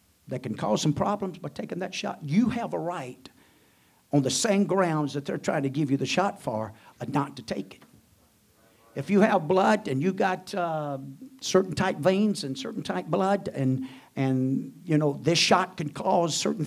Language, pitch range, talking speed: English, 135-195 Hz, 195 wpm